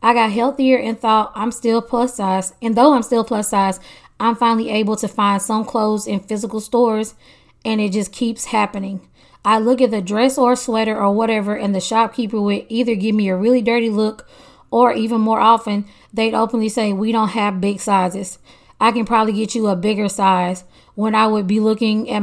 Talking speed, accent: 205 wpm, American